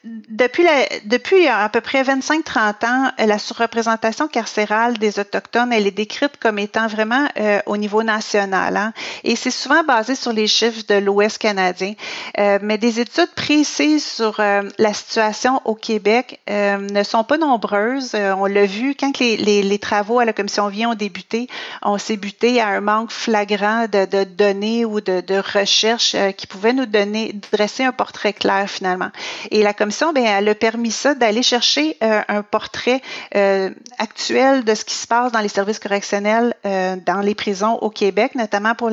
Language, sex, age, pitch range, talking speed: French, female, 40-59, 205-245 Hz, 185 wpm